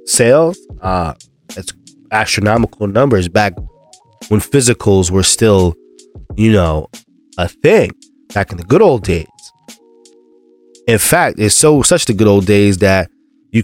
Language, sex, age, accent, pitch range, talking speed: English, male, 20-39, American, 90-125 Hz, 135 wpm